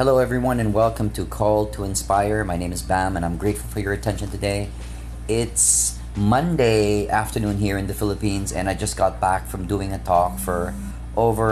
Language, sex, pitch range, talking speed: English, male, 80-105 Hz, 195 wpm